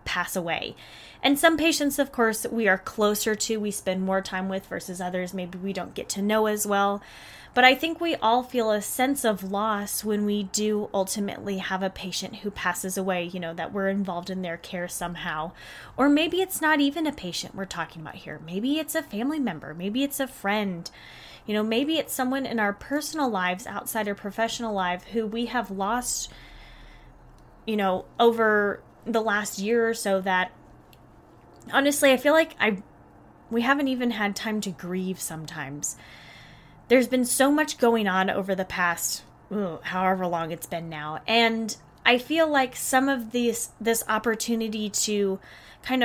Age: 10-29